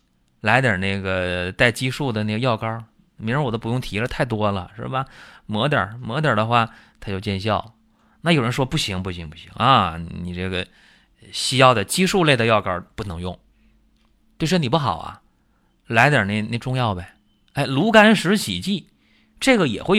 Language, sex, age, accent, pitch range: Chinese, male, 30-49, native, 95-135 Hz